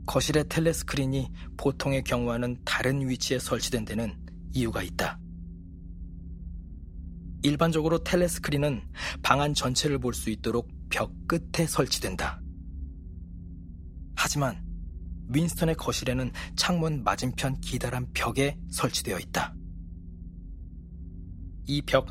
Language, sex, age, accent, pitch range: Korean, male, 40-59, native, 85-135 Hz